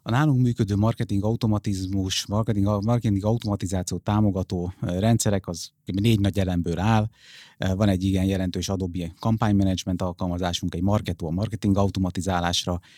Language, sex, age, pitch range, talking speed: Hungarian, male, 30-49, 95-115 Hz, 130 wpm